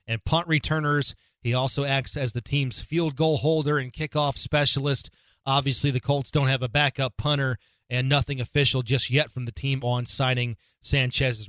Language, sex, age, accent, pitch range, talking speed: English, male, 30-49, American, 130-155 Hz, 180 wpm